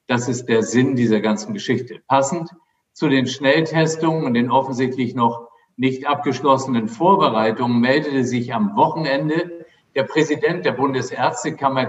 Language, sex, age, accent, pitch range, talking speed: German, male, 50-69, German, 125-155 Hz, 130 wpm